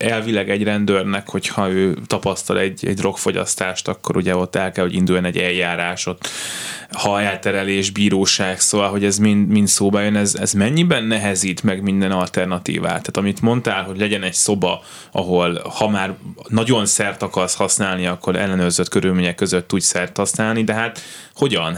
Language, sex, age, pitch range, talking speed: Hungarian, male, 20-39, 90-105 Hz, 165 wpm